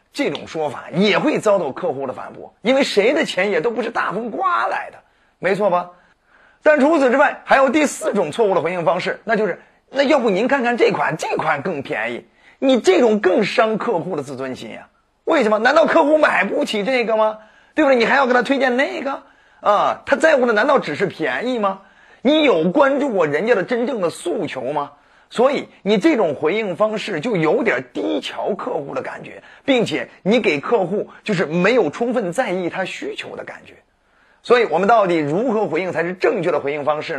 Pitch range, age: 185-275 Hz, 30-49